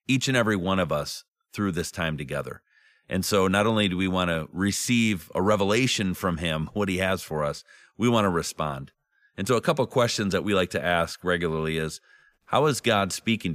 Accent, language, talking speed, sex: American, English, 215 wpm, male